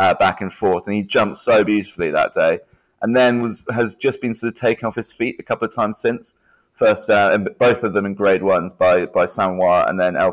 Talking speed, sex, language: 250 wpm, male, English